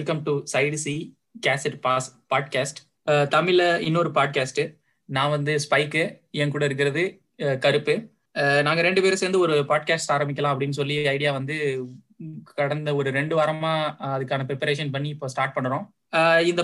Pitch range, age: 140-160 Hz, 20-39